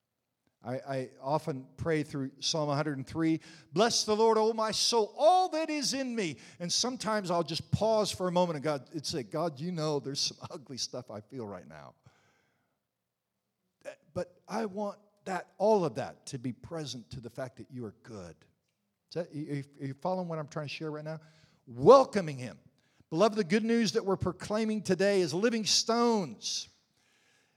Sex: male